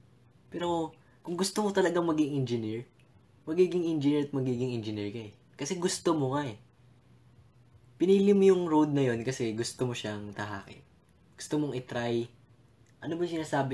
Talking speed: 155 wpm